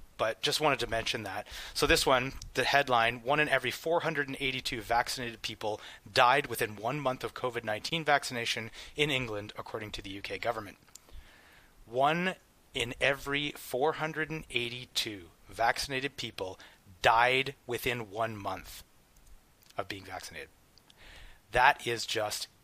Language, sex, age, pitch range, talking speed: English, male, 30-49, 115-140 Hz, 125 wpm